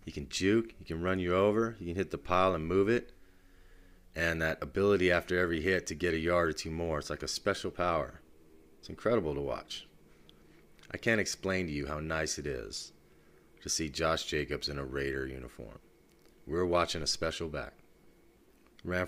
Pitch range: 75-90 Hz